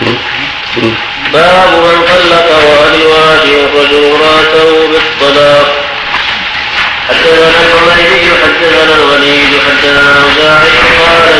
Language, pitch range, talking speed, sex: Arabic, 150-165 Hz, 65 wpm, male